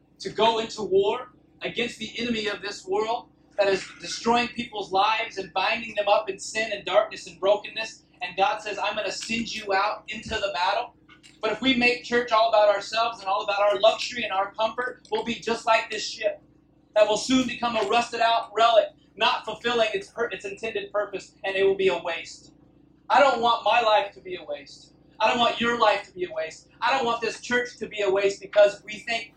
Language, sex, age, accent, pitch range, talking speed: English, male, 30-49, American, 185-235 Hz, 225 wpm